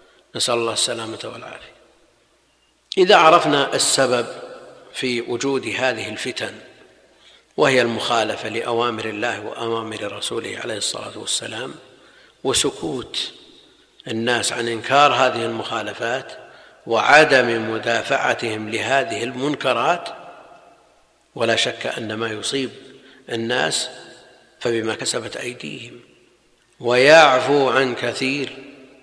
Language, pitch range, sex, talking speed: Arabic, 115-140 Hz, male, 85 wpm